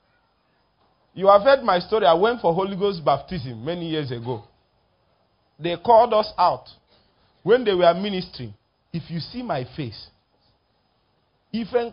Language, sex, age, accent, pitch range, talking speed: English, male, 40-59, Nigerian, 140-230 Hz, 140 wpm